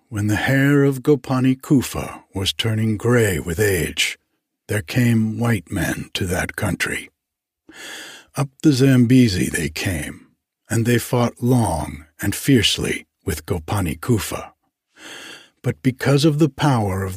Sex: male